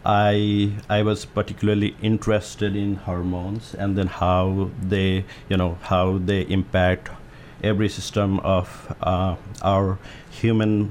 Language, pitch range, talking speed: English, 95-105 Hz, 120 wpm